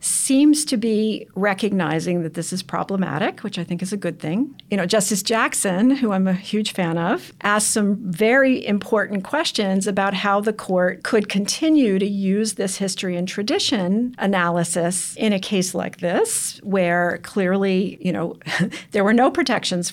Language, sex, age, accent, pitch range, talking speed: English, female, 50-69, American, 175-215 Hz, 170 wpm